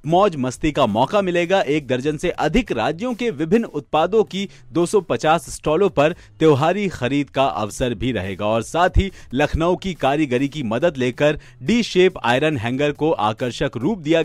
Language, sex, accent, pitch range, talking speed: Hindi, male, native, 135-195 Hz, 170 wpm